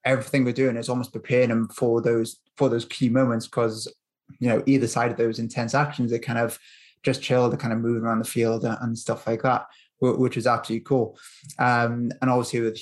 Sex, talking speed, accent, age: male, 220 wpm, British, 20-39